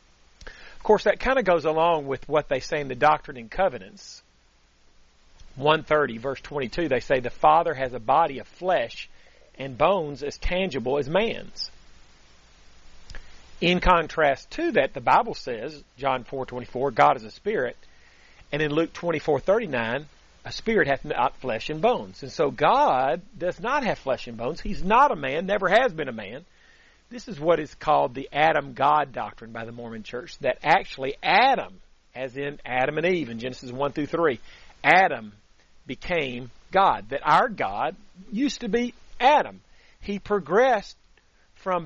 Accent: American